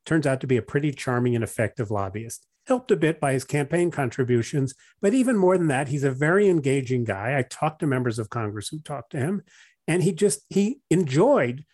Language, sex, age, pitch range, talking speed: English, male, 40-59, 120-160 Hz, 215 wpm